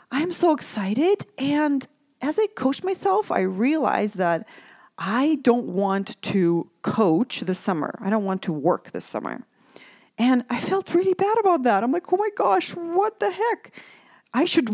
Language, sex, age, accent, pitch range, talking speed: English, female, 30-49, American, 200-300 Hz, 170 wpm